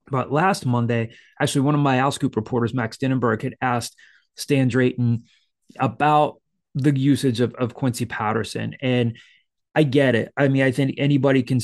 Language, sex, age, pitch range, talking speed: English, male, 30-49, 120-135 Hz, 165 wpm